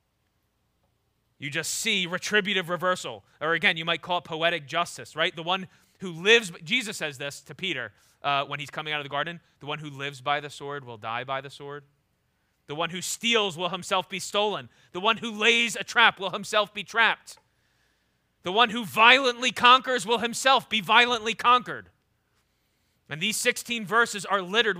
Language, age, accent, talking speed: English, 30-49, American, 185 wpm